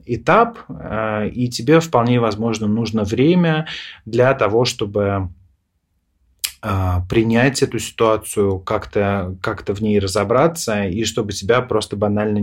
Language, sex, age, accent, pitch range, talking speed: Russian, male, 30-49, native, 95-115 Hz, 105 wpm